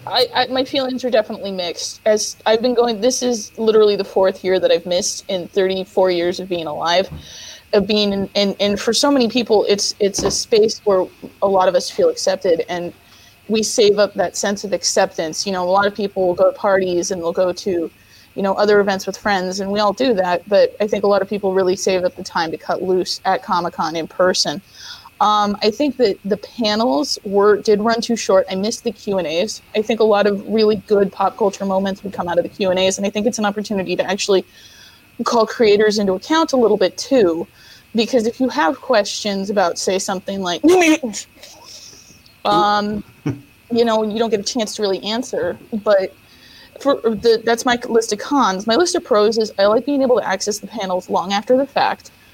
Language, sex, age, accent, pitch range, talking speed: English, female, 20-39, American, 190-230 Hz, 225 wpm